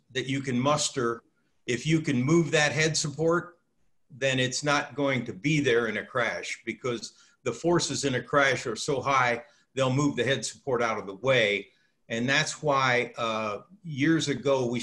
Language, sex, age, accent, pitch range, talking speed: English, male, 50-69, American, 115-140 Hz, 185 wpm